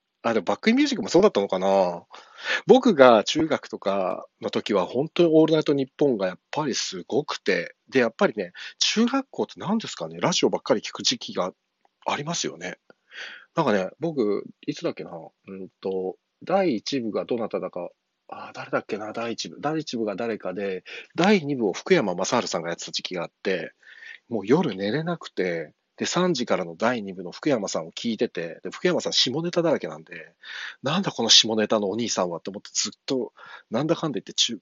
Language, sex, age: Japanese, male, 40-59